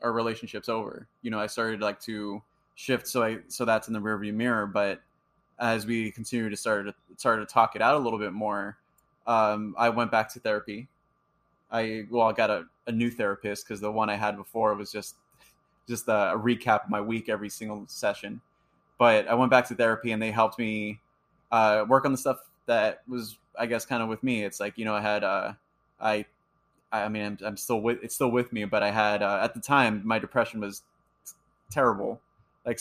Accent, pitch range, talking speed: American, 105-120 Hz, 220 wpm